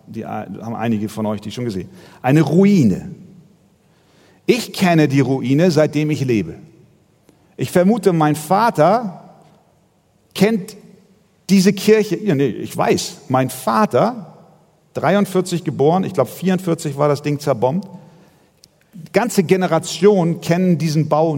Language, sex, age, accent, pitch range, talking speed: German, male, 40-59, German, 150-195 Hz, 125 wpm